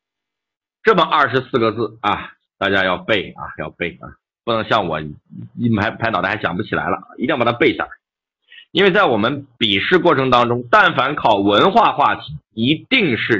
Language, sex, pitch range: Chinese, male, 115-190 Hz